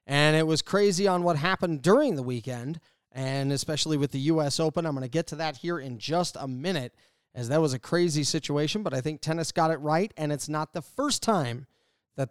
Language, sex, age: English, male, 30-49